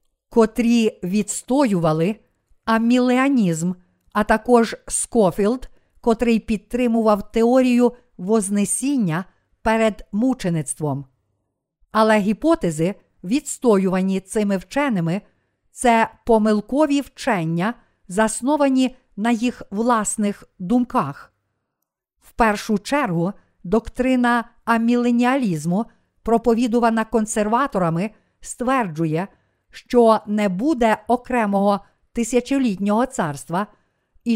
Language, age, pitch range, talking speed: Ukrainian, 50-69, 195-245 Hz, 70 wpm